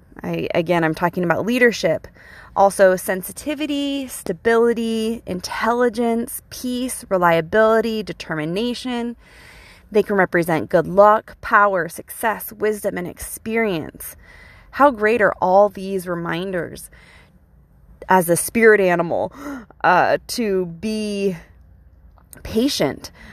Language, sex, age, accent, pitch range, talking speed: English, female, 20-39, American, 165-215 Hz, 95 wpm